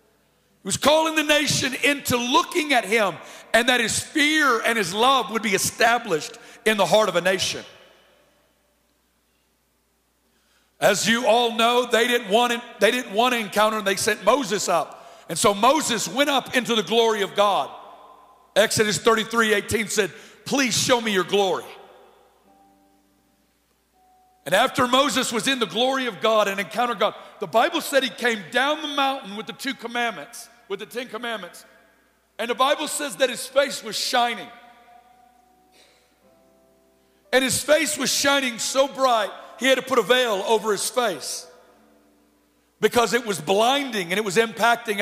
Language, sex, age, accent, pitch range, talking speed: English, male, 50-69, American, 205-260 Hz, 165 wpm